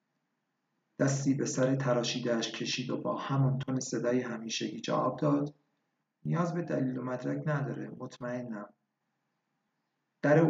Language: Persian